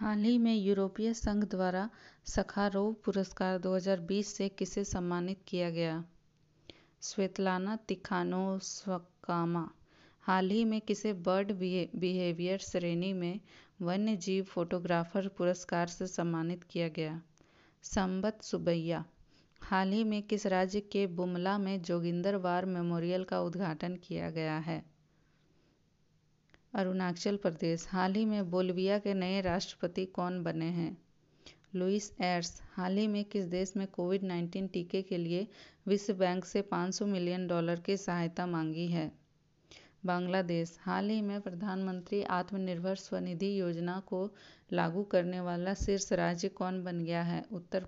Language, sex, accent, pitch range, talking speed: Hindi, female, native, 175-195 Hz, 130 wpm